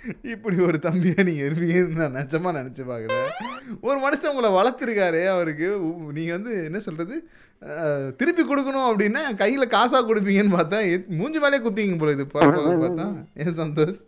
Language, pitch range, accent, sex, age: Tamil, 145-215 Hz, native, male, 30-49